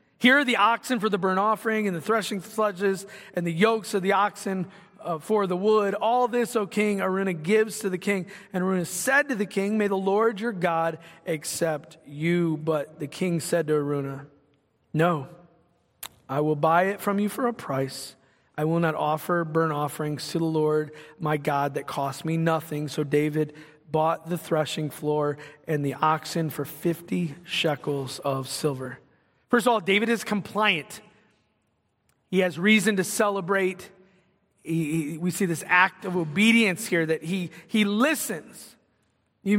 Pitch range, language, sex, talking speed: 160-215 Hz, English, male, 175 wpm